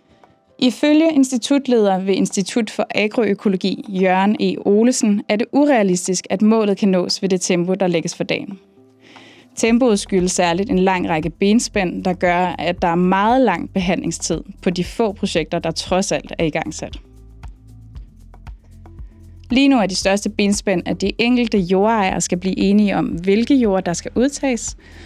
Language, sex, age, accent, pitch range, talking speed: Danish, female, 20-39, native, 180-225 Hz, 160 wpm